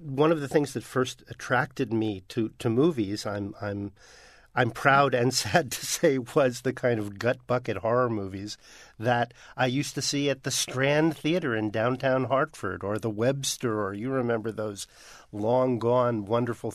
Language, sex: English, male